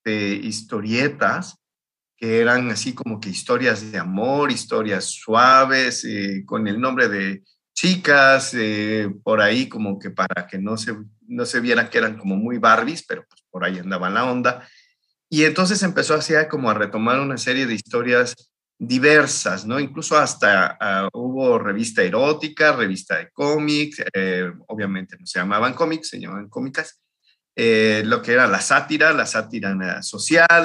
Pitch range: 105-150 Hz